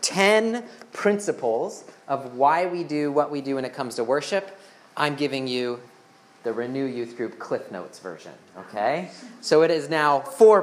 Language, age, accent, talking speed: English, 30-49, American, 170 wpm